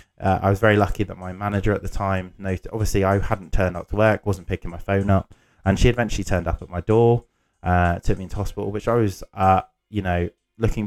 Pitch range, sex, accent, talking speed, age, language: 90-110 Hz, male, British, 235 wpm, 20-39, English